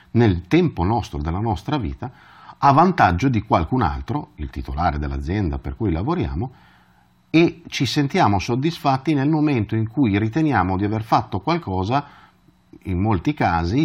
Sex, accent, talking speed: male, native, 145 wpm